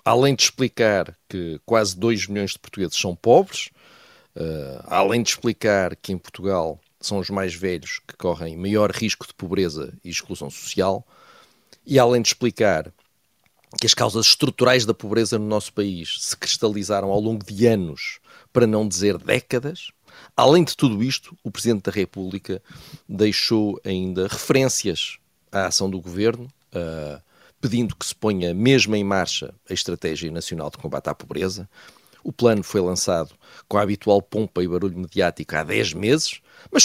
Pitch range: 95-115 Hz